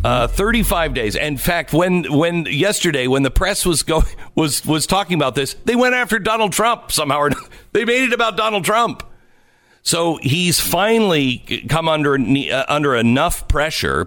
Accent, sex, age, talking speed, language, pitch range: American, male, 50-69, 165 wpm, English, 115-175 Hz